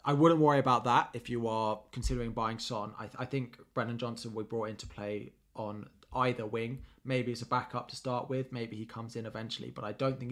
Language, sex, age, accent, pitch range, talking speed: English, male, 20-39, British, 115-135 Hz, 240 wpm